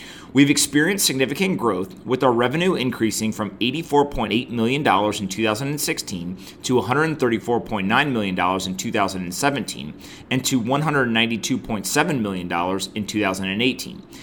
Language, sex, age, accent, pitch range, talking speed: English, male, 30-49, American, 100-135 Hz, 100 wpm